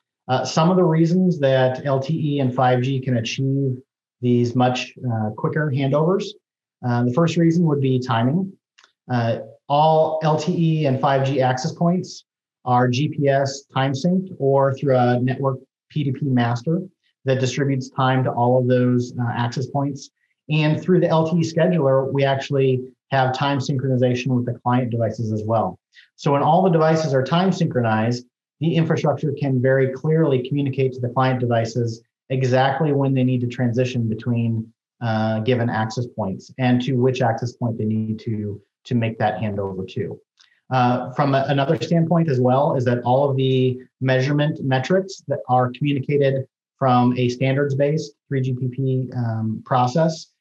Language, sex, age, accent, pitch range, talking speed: English, male, 30-49, American, 125-145 Hz, 155 wpm